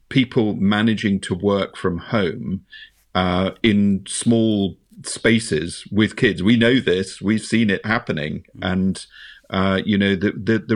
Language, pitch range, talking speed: English, 95-115 Hz, 140 wpm